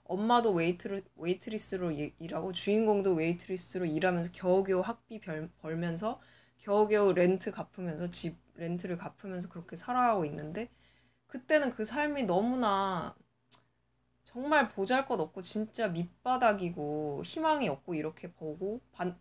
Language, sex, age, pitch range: Korean, female, 20-39, 170-225 Hz